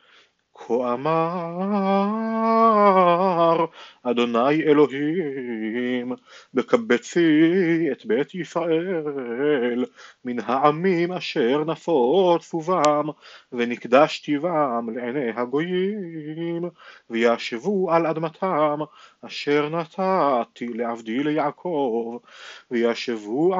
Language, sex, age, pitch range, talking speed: Hebrew, male, 30-49, 140-180 Hz, 65 wpm